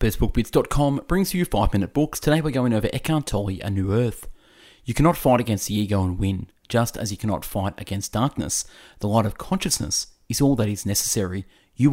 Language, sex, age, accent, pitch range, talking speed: English, male, 30-49, Australian, 100-130 Hz, 190 wpm